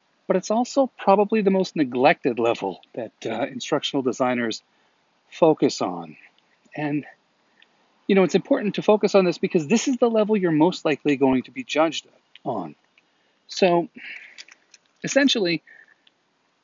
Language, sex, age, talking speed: English, male, 40-59, 135 wpm